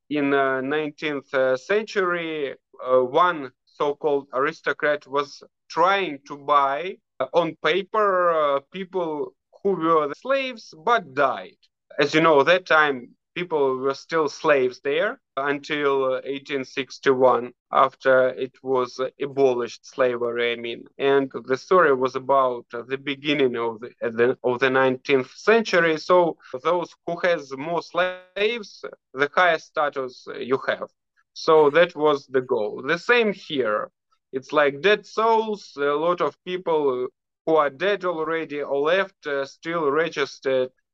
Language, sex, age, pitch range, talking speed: English, male, 20-39, 135-175 Hz, 140 wpm